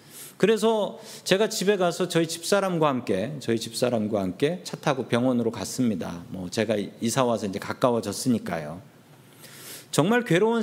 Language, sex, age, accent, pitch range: Korean, male, 40-59, native, 125-175 Hz